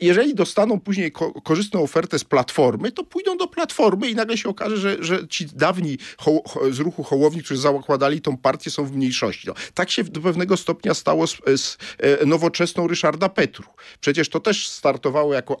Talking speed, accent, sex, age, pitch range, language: 185 wpm, native, male, 40-59, 125-180 Hz, Polish